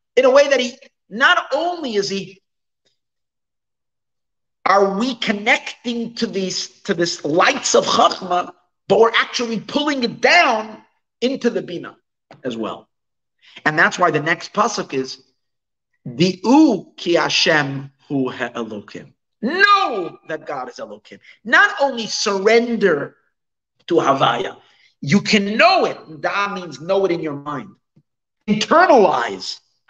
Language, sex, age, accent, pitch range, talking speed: English, male, 50-69, American, 140-230 Hz, 130 wpm